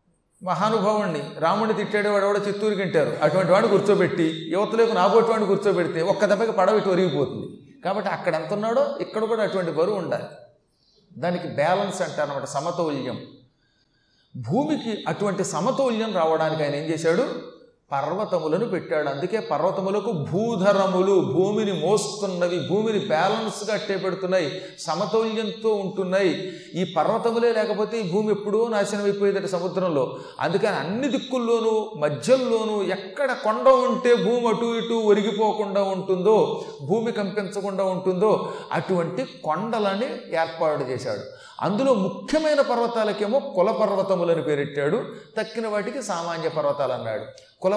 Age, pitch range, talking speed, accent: 40-59, 160-215 Hz, 105 wpm, native